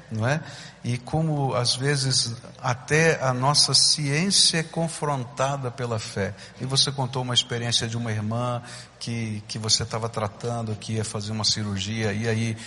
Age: 60-79